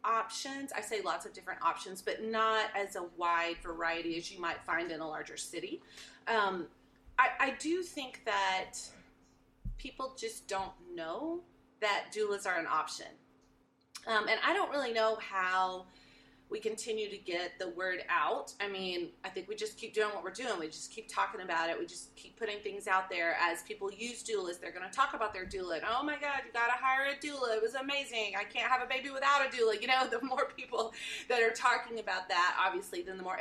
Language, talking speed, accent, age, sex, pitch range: English, 215 wpm, American, 30-49, female, 190-260 Hz